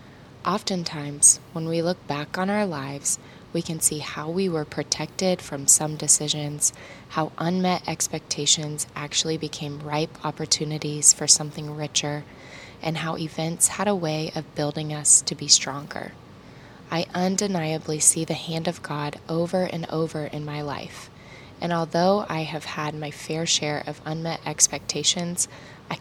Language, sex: English, female